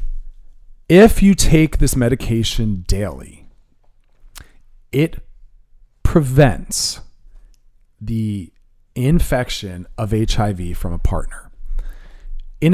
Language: English